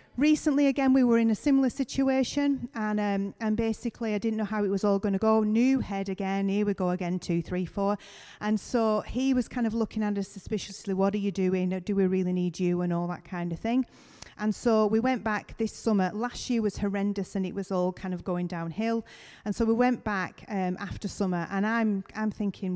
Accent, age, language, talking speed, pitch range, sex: British, 40-59, English, 230 wpm, 190-230 Hz, female